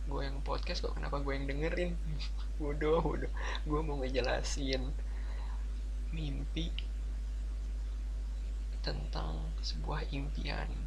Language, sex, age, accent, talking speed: Indonesian, male, 20-39, native, 95 wpm